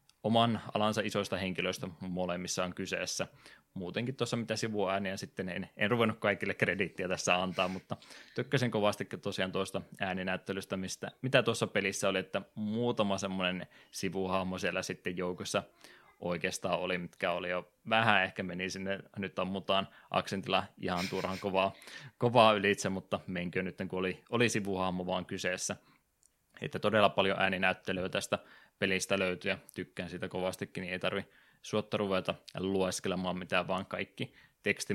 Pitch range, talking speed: 95-105 Hz, 145 wpm